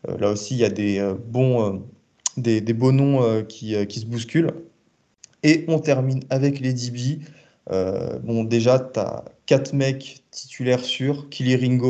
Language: French